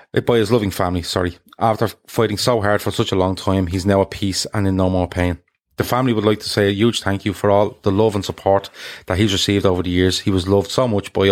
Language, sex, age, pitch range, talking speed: English, male, 20-39, 90-105 Hz, 270 wpm